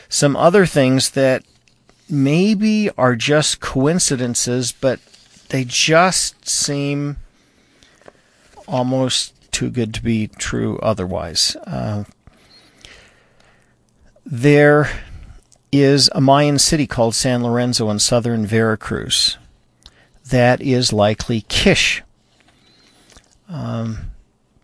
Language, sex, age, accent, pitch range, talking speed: English, male, 50-69, American, 115-140 Hz, 90 wpm